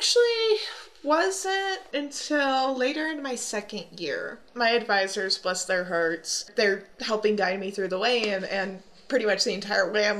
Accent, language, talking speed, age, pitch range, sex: American, English, 165 wpm, 20-39, 180-220 Hz, female